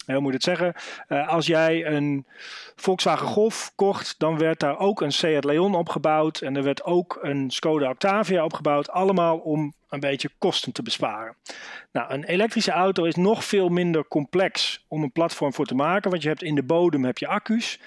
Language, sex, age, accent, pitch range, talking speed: Dutch, male, 40-59, Dutch, 145-180 Hz, 200 wpm